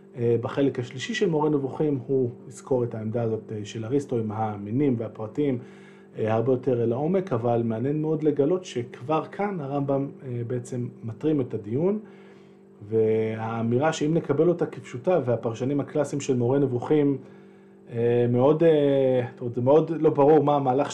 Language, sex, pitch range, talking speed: Hebrew, male, 120-165 Hz, 140 wpm